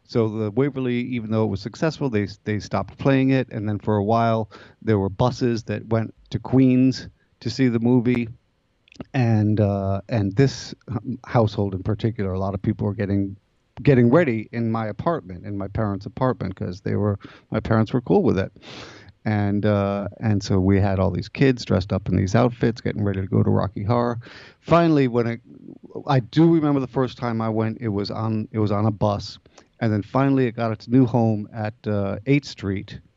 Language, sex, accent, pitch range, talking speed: English, male, American, 100-125 Hz, 205 wpm